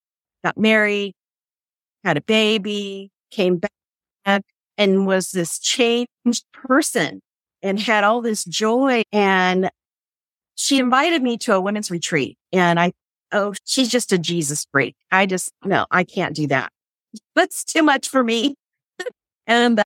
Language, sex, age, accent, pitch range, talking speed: English, female, 50-69, American, 165-220 Hz, 140 wpm